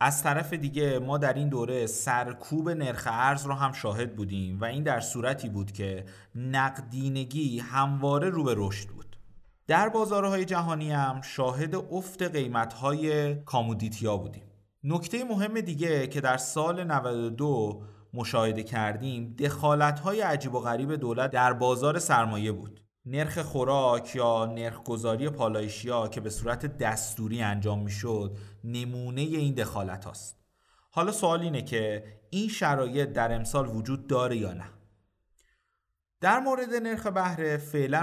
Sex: male